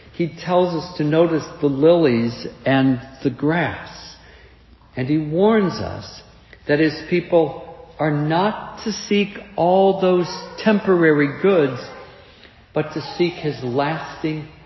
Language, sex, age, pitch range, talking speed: English, male, 60-79, 140-180 Hz, 125 wpm